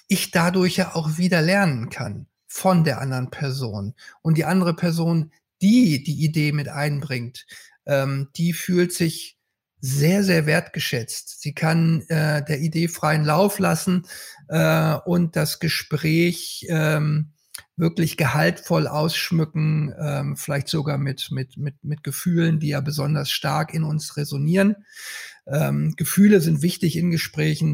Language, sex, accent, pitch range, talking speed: German, male, German, 145-175 Hz, 140 wpm